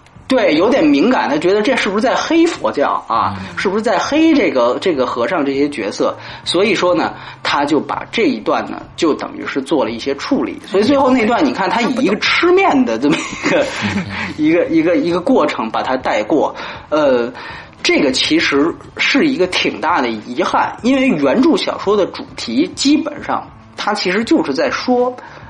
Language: French